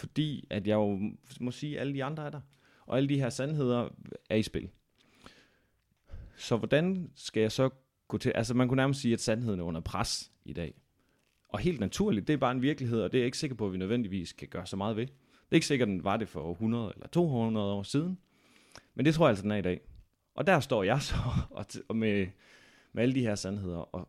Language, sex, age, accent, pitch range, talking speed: Danish, male, 30-49, native, 95-130 Hz, 245 wpm